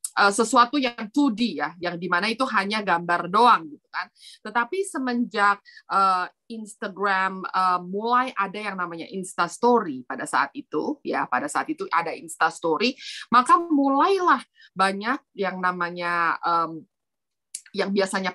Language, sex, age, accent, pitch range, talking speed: Indonesian, female, 30-49, native, 180-250 Hz, 135 wpm